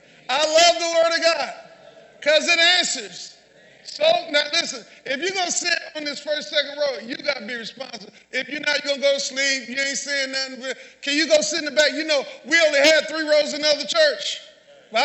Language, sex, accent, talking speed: English, male, American, 235 wpm